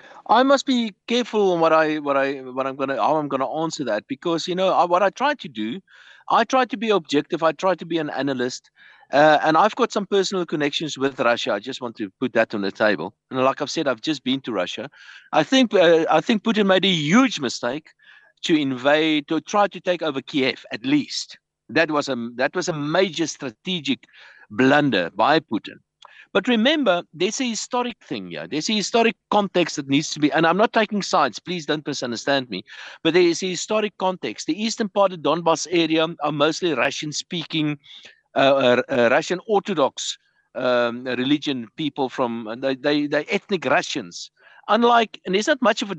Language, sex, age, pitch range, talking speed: English, male, 60-79, 135-205 Hz, 205 wpm